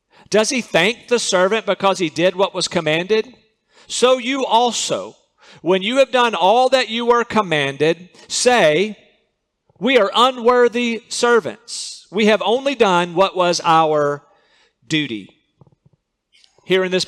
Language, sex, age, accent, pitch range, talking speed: English, male, 50-69, American, 165-210 Hz, 135 wpm